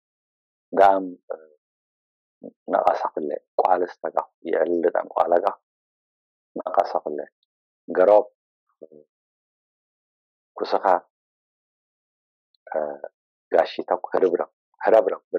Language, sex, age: English, male, 50-69